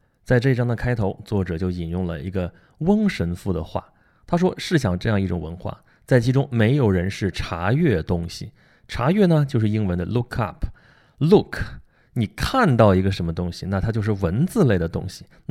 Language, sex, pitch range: Chinese, male, 95-140 Hz